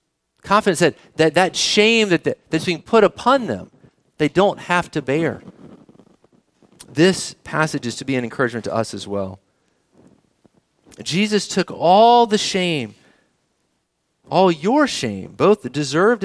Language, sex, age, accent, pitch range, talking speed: English, male, 40-59, American, 150-205 Hz, 135 wpm